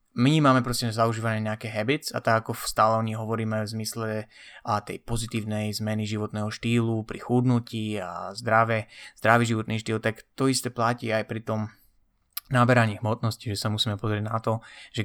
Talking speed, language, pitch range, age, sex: 175 wpm, Slovak, 105-120 Hz, 20-39, male